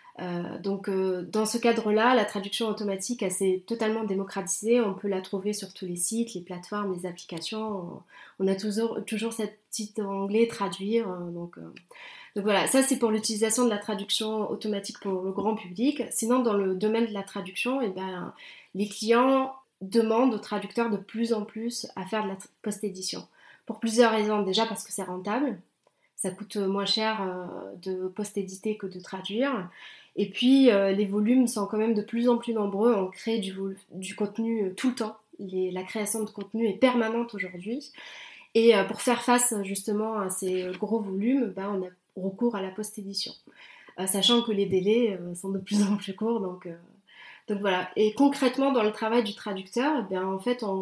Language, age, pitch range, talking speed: French, 20-39, 195-230 Hz, 200 wpm